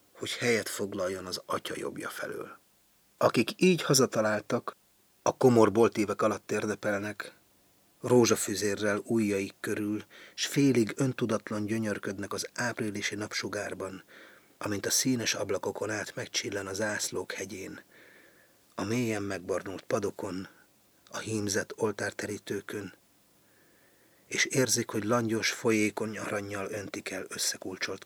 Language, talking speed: Hungarian, 105 wpm